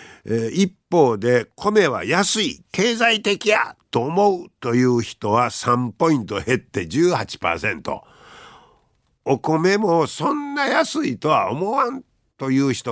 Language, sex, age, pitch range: Japanese, male, 60-79, 110-180 Hz